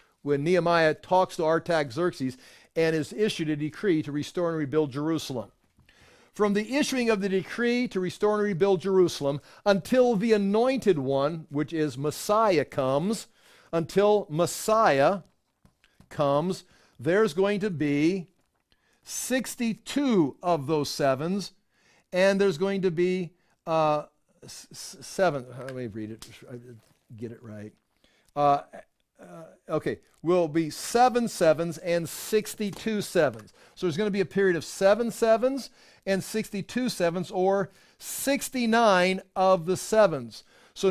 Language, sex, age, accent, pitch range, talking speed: English, male, 60-79, American, 155-205 Hz, 130 wpm